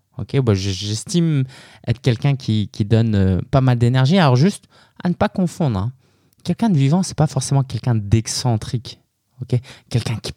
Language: French